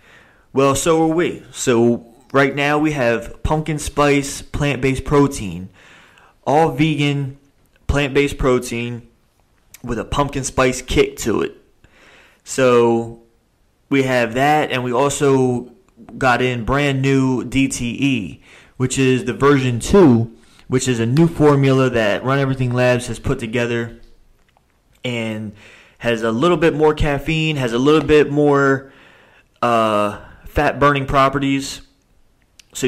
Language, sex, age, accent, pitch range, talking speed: English, male, 20-39, American, 115-140 Hz, 130 wpm